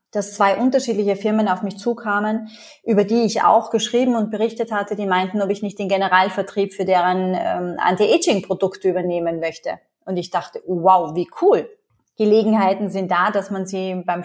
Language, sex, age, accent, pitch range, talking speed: German, female, 30-49, German, 190-225 Hz, 175 wpm